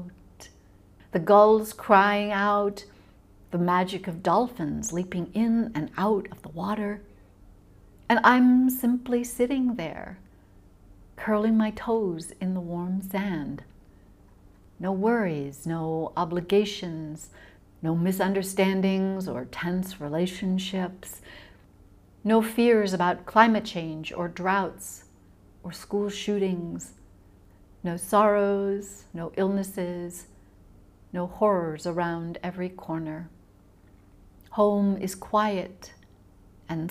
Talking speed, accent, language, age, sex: 95 wpm, American, English, 60-79, female